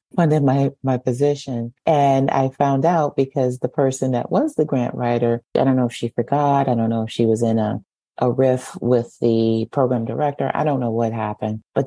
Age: 30-49